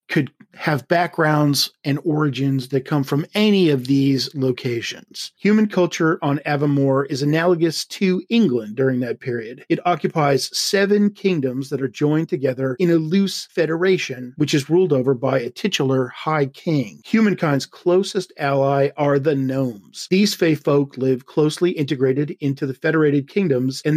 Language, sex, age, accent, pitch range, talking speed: English, male, 40-59, American, 135-170 Hz, 155 wpm